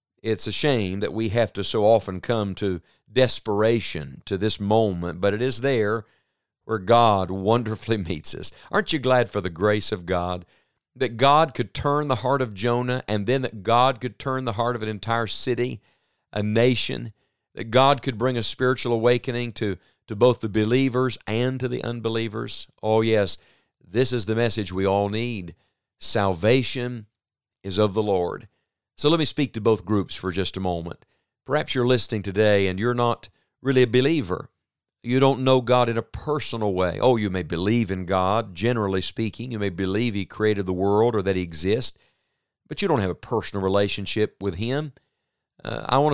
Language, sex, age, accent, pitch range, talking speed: English, male, 50-69, American, 100-125 Hz, 185 wpm